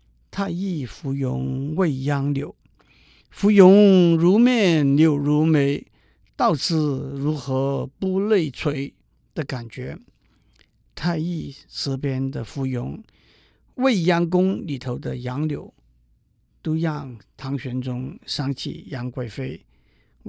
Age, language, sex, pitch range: 50-69, Chinese, male, 130-160 Hz